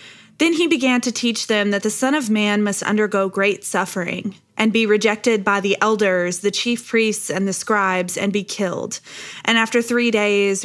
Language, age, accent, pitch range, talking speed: English, 20-39, American, 195-230 Hz, 190 wpm